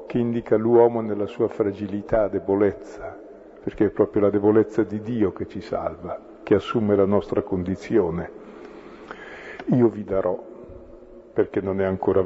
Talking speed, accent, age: 140 wpm, native, 50-69